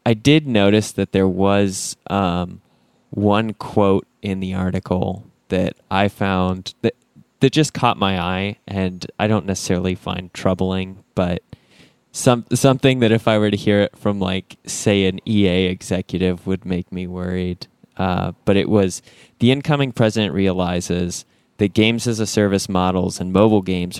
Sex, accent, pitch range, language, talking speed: male, American, 90-105 Hz, English, 155 wpm